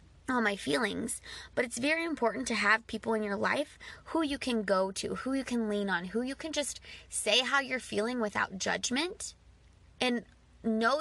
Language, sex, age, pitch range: English, female, 20-39, 210-265 Hz